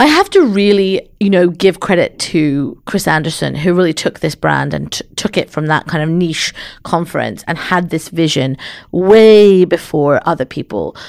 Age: 40-59